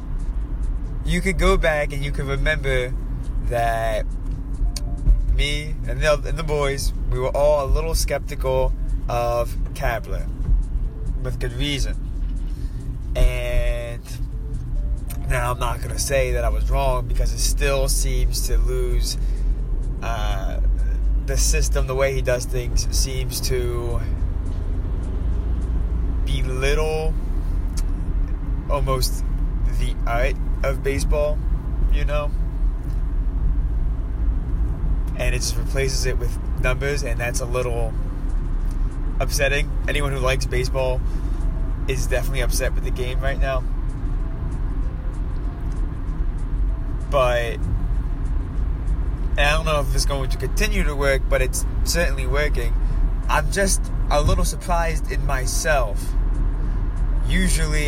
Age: 20-39